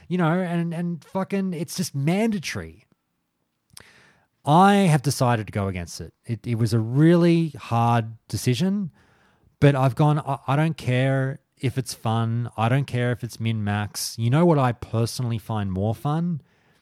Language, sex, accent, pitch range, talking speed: English, male, Australian, 105-130 Hz, 165 wpm